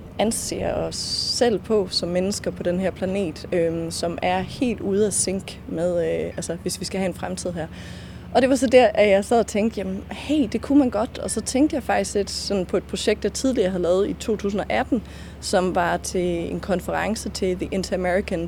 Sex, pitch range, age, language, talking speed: female, 180-225 Hz, 30-49, Danish, 215 wpm